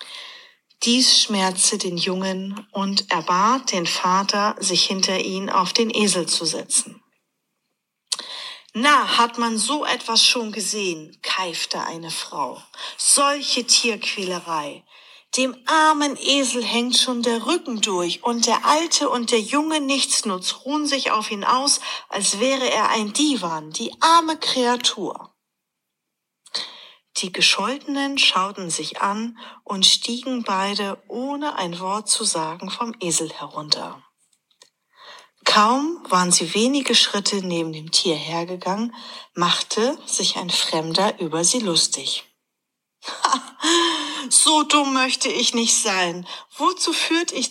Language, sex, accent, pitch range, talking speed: German, female, German, 195-280 Hz, 125 wpm